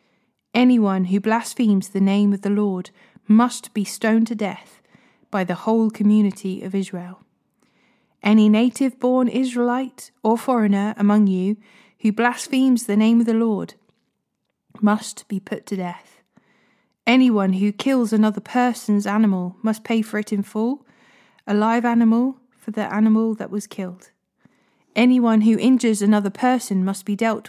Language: English